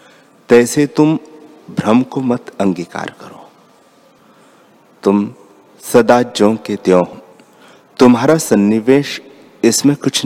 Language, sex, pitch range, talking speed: Hindi, male, 100-125 Hz, 90 wpm